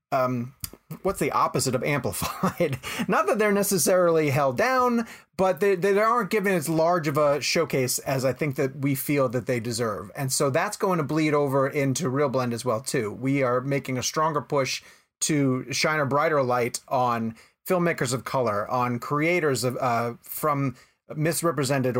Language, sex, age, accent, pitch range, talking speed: English, male, 30-49, American, 125-155 Hz, 180 wpm